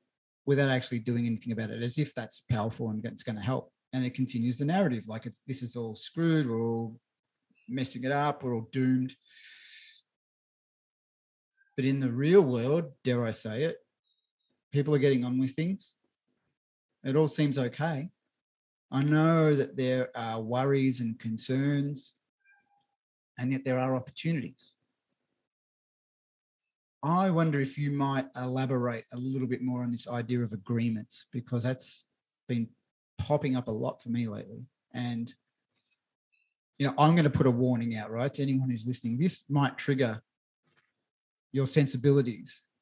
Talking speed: 155 wpm